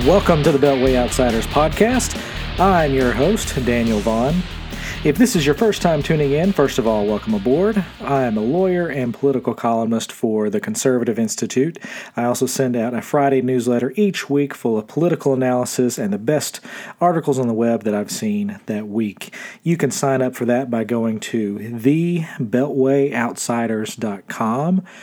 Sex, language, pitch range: male, English, 115-150 Hz